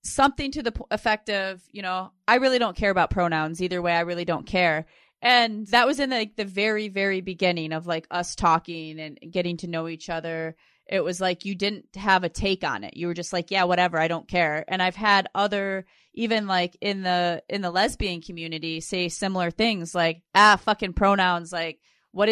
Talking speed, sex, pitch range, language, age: 210 wpm, female, 180-220 Hz, English, 30-49